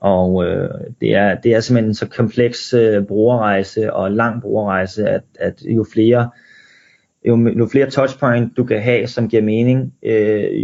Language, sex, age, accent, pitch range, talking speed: Danish, male, 30-49, native, 100-125 Hz, 170 wpm